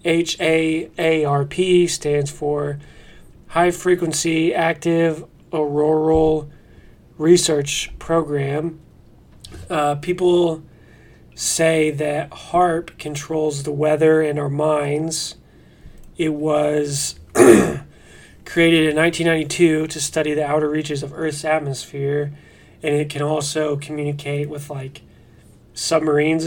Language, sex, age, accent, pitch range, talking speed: English, male, 30-49, American, 145-160 Hz, 95 wpm